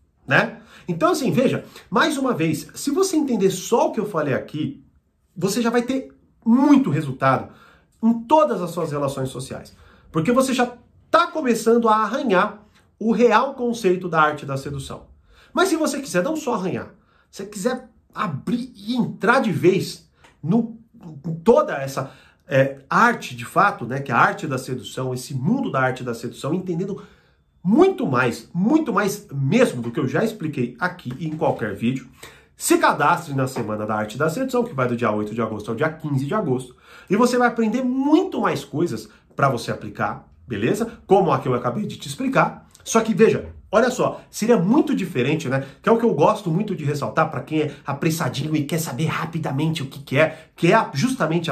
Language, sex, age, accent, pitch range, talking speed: Portuguese, male, 40-59, Brazilian, 135-230 Hz, 190 wpm